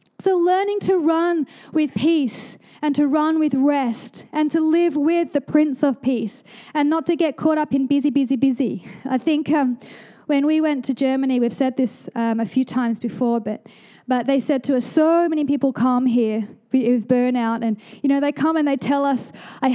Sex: female